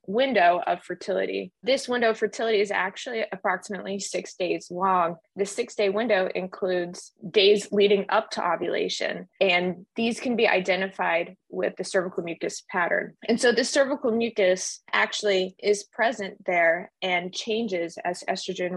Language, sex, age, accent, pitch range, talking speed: English, female, 20-39, American, 180-215 Hz, 145 wpm